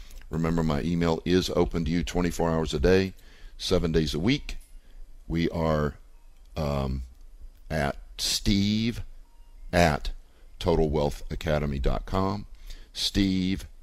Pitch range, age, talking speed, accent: 70-85 Hz, 50-69, 100 wpm, American